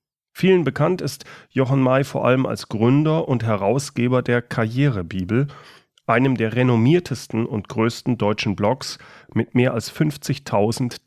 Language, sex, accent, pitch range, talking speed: German, male, German, 115-150 Hz, 130 wpm